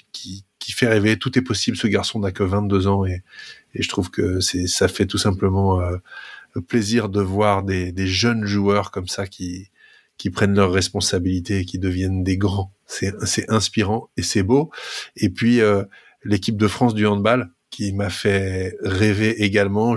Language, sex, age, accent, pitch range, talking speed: French, male, 30-49, French, 95-110 Hz, 190 wpm